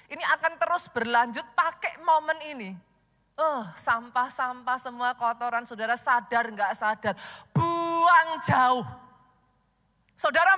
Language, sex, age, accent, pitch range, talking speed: Indonesian, female, 20-39, native, 240-350 Hz, 110 wpm